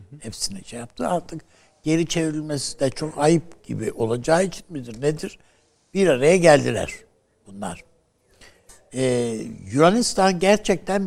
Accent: native